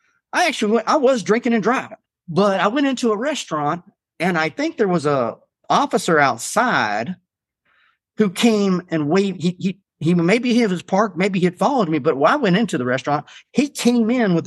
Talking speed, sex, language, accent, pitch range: 205 wpm, male, English, American, 140-215 Hz